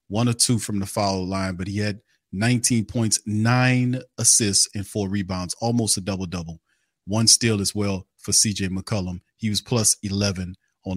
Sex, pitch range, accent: male, 95-110 Hz, American